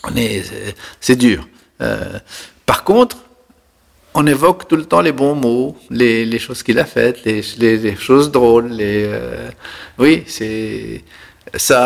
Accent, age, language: French, 50-69, French